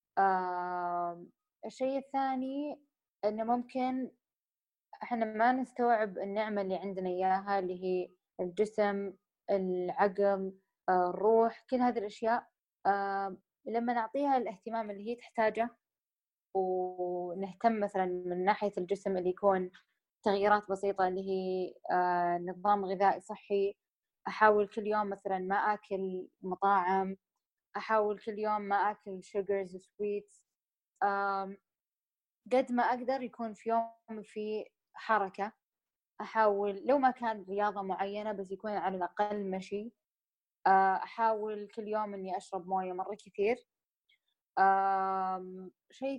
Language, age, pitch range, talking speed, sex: Persian, 20-39, 190-225 Hz, 105 wpm, female